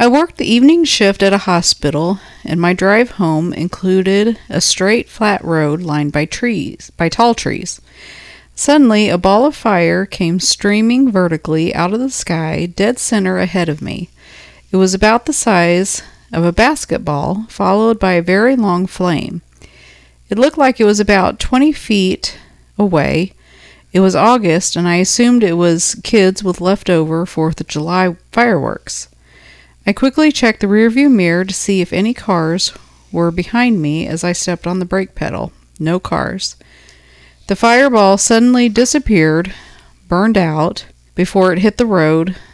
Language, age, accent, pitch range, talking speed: English, 50-69, American, 160-210 Hz, 160 wpm